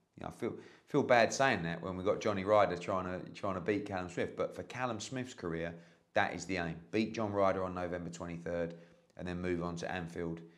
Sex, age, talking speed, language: male, 30-49, 235 wpm, English